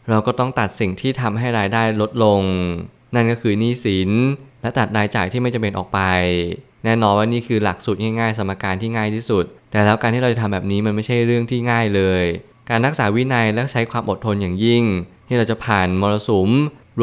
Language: Thai